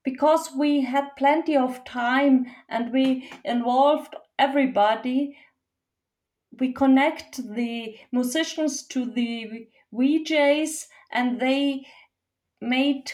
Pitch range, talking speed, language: 245-290 Hz, 90 wpm, English